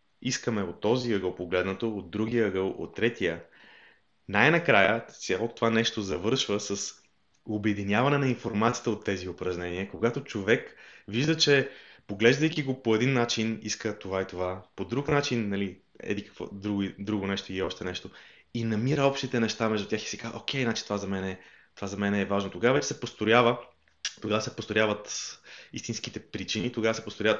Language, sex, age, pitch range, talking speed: Bulgarian, male, 20-39, 100-125 Hz, 170 wpm